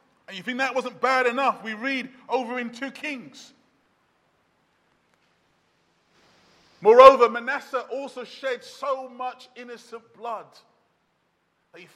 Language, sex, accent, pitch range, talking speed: English, male, British, 200-280 Hz, 110 wpm